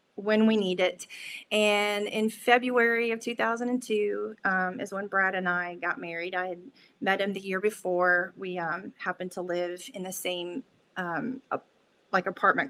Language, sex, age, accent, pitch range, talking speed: English, female, 30-49, American, 180-225 Hz, 170 wpm